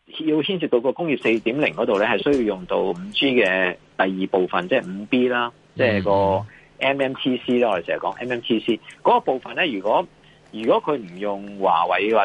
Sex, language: male, Chinese